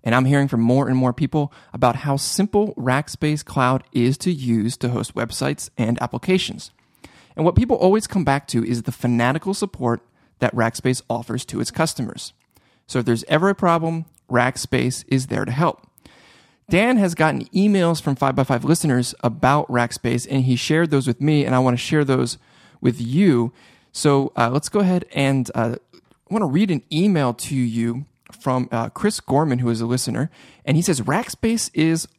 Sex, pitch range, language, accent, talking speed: male, 125-165 Hz, English, American, 185 wpm